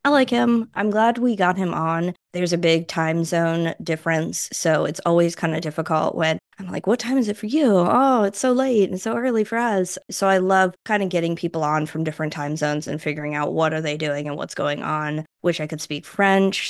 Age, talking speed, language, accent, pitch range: 20-39, 240 wpm, English, American, 160-210 Hz